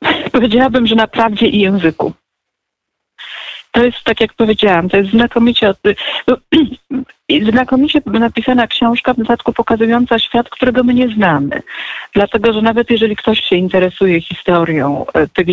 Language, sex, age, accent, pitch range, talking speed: Polish, female, 40-59, native, 170-240 Hz, 130 wpm